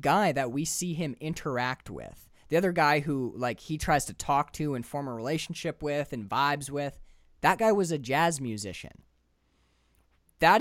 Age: 20-39